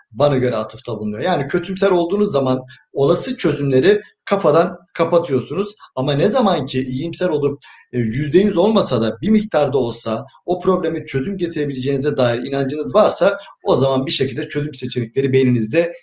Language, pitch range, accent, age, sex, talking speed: Turkish, 130-195 Hz, native, 50-69, male, 140 wpm